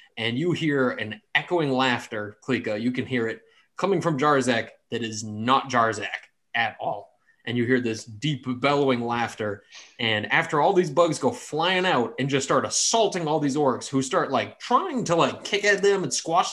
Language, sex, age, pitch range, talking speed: English, male, 20-39, 120-155 Hz, 190 wpm